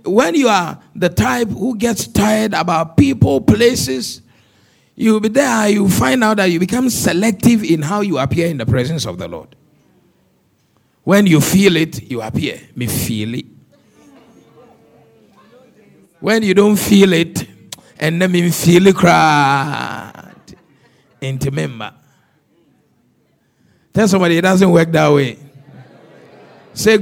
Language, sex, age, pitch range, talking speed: English, male, 50-69, 145-205 Hz, 135 wpm